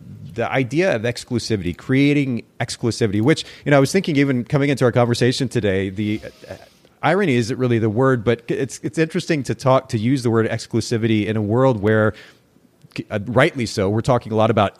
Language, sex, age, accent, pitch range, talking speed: English, male, 30-49, American, 105-130 Hz, 200 wpm